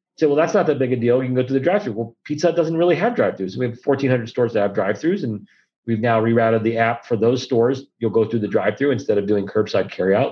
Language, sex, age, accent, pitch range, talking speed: English, male, 40-59, American, 105-130 Hz, 275 wpm